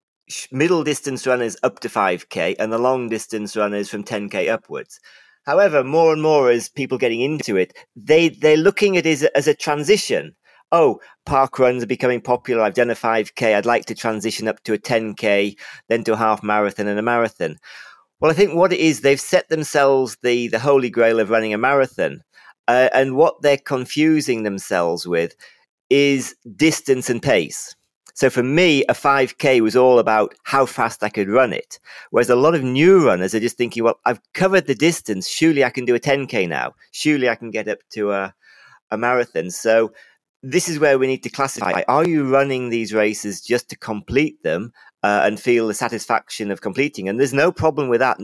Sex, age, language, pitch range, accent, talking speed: male, 40-59, English, 110-145 Hz, British, 200 wpm